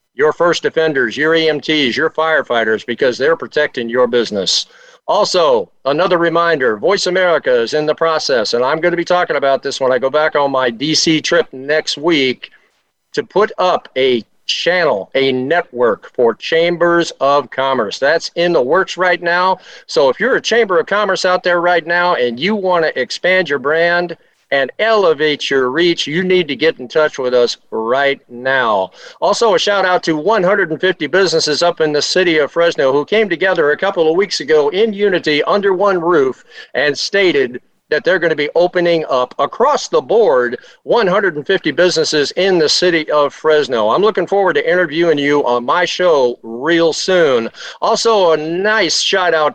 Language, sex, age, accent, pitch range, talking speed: English, male, 50-69, American, 145-190 Hz, 180 wpm